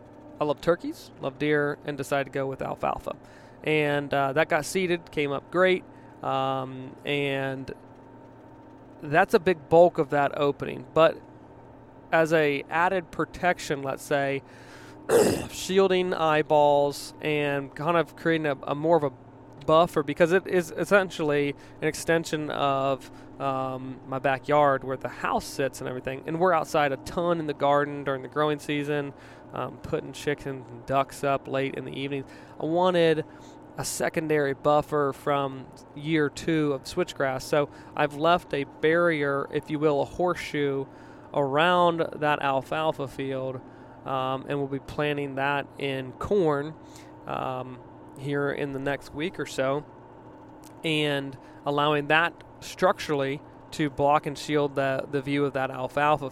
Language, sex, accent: English, male, American